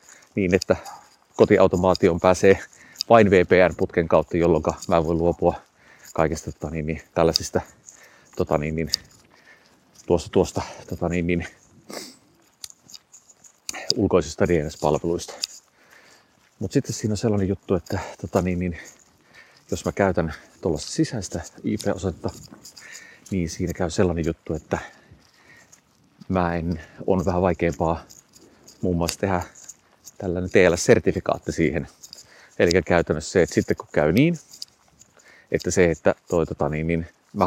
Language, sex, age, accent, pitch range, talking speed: Finnish, male, 30-49, native, 85-95 Hz, 115 wpm